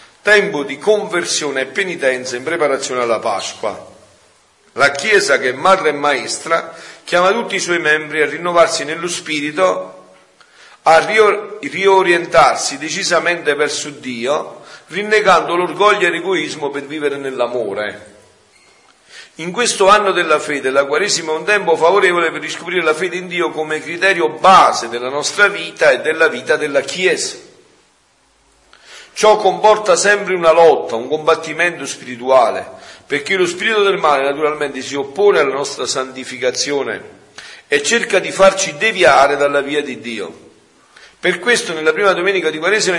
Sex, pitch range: male, 145-195 Hz